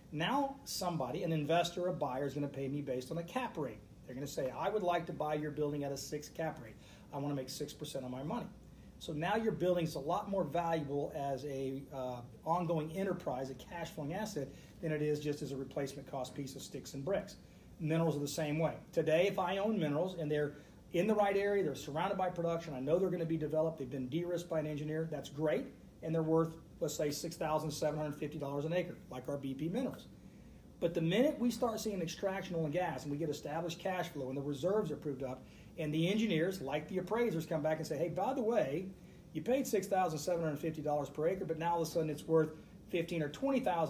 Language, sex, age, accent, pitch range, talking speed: English, male, 40-59, American, 145-175 Hz, 235 wpm